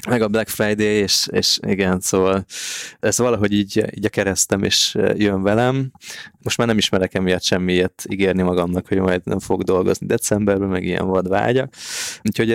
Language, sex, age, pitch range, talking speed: Hungarian, male, 20-39, 95-110 Hz, 175 wpm